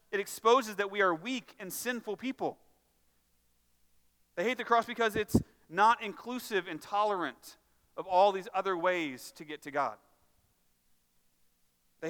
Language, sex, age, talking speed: English, male, 40-59, 145 wpm